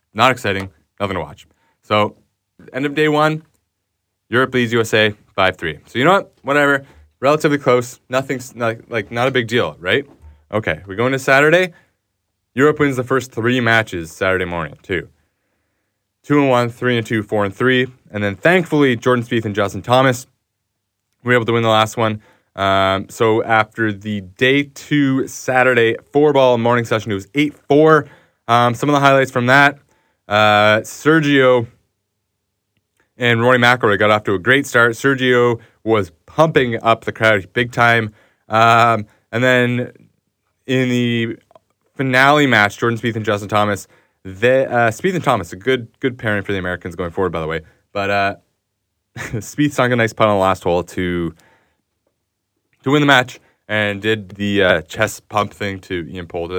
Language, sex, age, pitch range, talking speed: English, male, 20-39, 100-130 Hz, 170 wpm